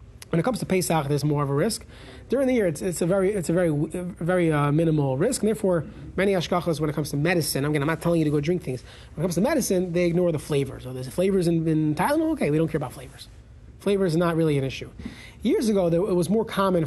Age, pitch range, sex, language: 30-49, 145-185 Hz, male, English